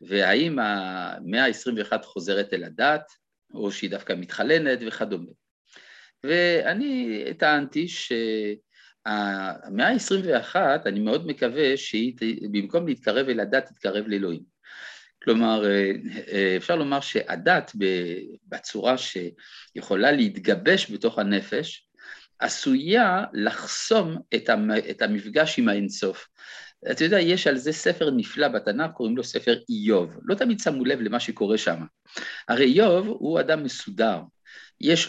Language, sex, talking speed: Hebrew, male, 115 wpm